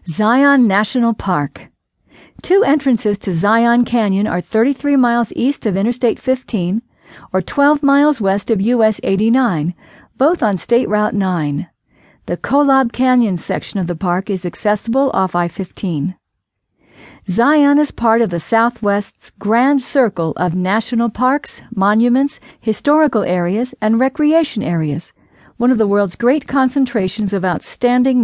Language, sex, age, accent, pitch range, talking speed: English, female, 50-69, American, 190-255 Hz, 135 wpm